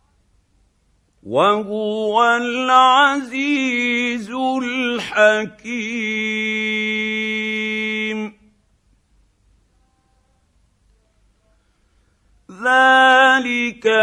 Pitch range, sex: 205-255 Hz, male